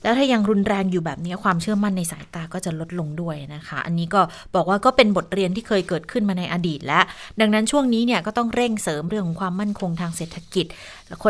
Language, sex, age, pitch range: Thai, female, 20-39, 180-235 Hz